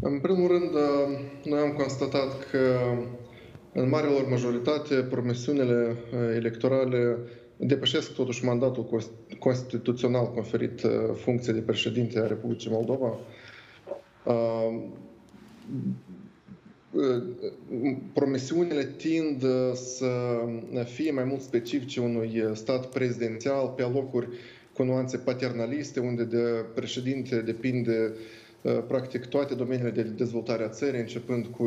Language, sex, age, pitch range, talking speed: Romanian, male, 20-39, 115-130 Hz, 100 wpm